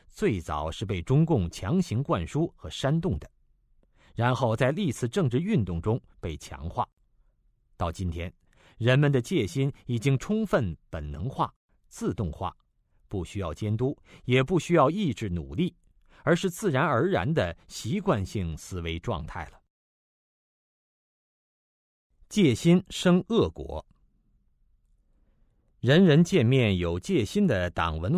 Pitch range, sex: 85-140 Hz, male